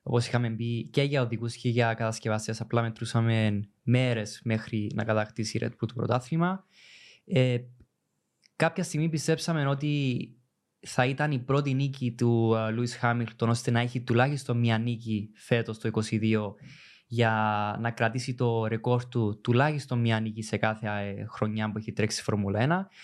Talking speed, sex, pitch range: 150 wpm, male, 115-140 Hz